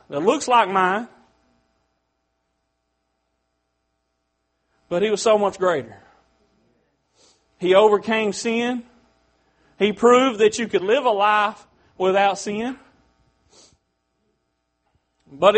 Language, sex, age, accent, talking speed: English, male, 40-59, American, 90 wpm